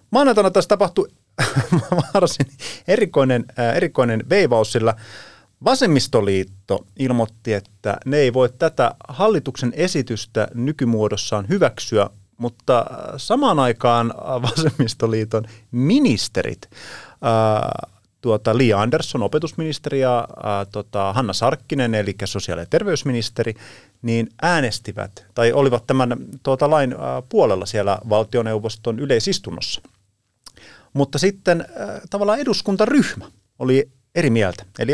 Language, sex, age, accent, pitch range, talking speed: Finnish, male, 30-49, native, 110-150 Hz, 95 wpm